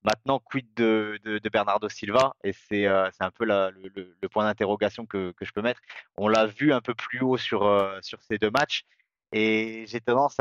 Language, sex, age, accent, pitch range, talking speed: French, male, 30-49, French, 100-125 Hz, 225 wpm